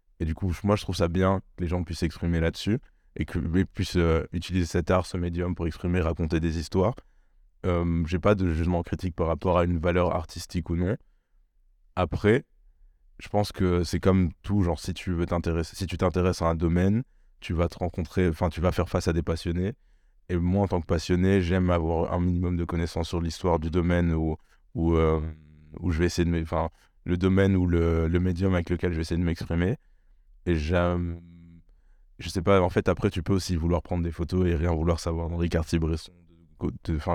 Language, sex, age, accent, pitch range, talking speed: French, male, 20-39, French, 85-95 Hz, 215 wpm